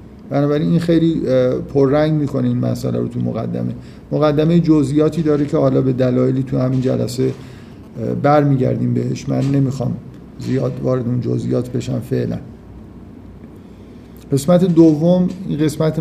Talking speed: 125 wpm